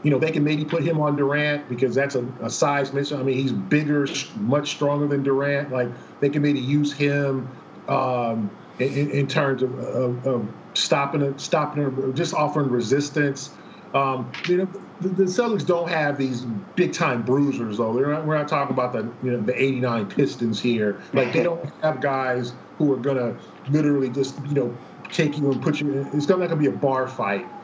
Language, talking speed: English, 205 wpm